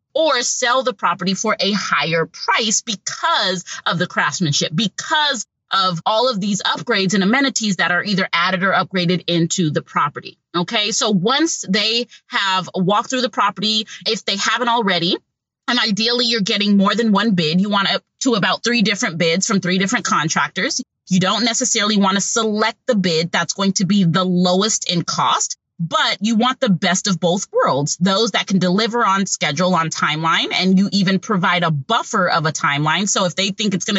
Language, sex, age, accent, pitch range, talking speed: English, female, 30-49, American, 180-225 Hz, 190 wpm